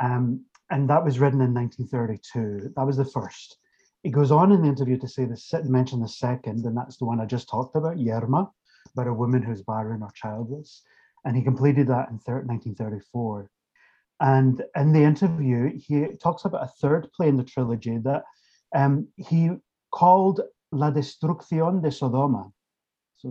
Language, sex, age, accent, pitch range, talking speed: English, male, 30-49, British, 115-140 Hz, 175 wpm